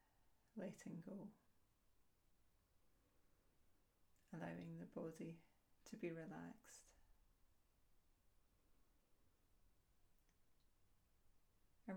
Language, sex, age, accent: English, female, 30-49, British